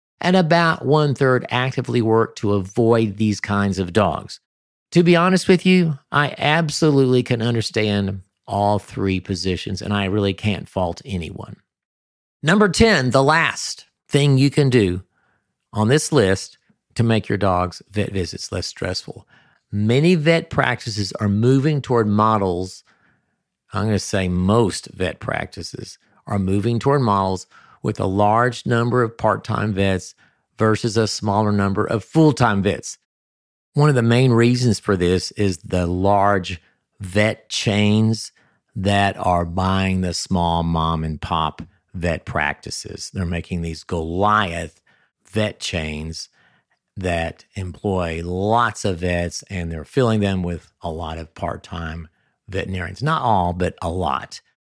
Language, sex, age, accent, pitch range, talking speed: English, male, 50-69, American, 90-120 Hz, 140 wpm